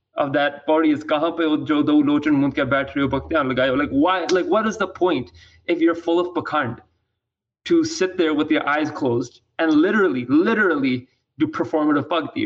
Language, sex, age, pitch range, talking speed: English, male, 20-39, 135-175 Hz, 140 wpm